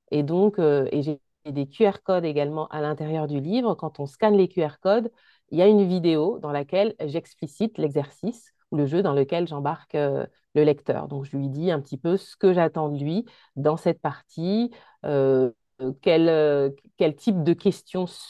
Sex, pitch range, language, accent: female, 145-185 Hz, French, French